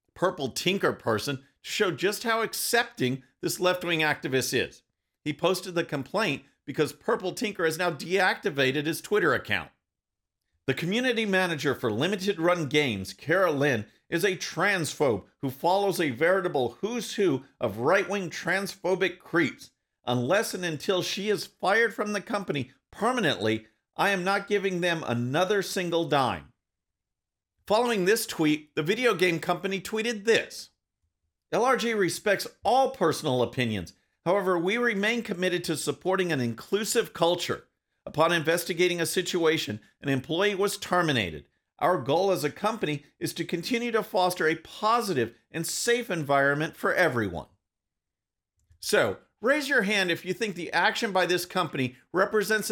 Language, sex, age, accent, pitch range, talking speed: English, male, 50-69, American, 150-200 Hz, 140 wpm